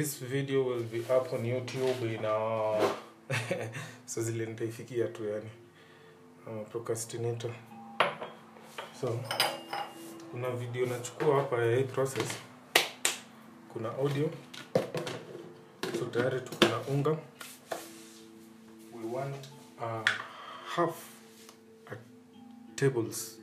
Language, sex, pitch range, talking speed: Swahili, male, 110-135 Hz, 90 wpm